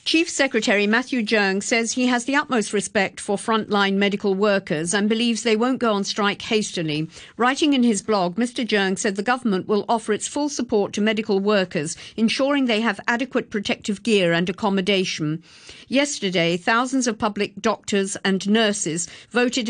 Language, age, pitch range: English, 50-69, 195-235 Hz